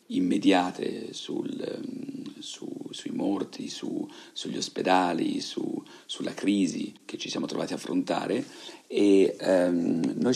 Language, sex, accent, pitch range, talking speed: Italian, male, native, 265-315 Hz, 115 wpm